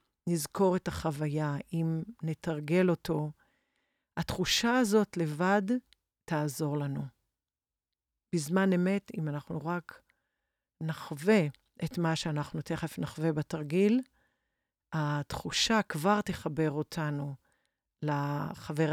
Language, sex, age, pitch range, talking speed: Hebrew, female, 50-69, 155-200 Hz, 90 wpm